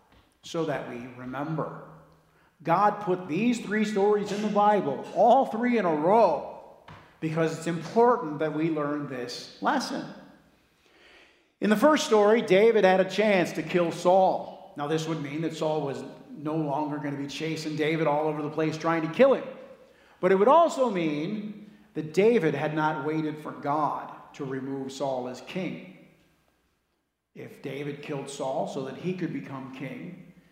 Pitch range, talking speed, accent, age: 155-210 Hz, 165 wpm, American, 50-69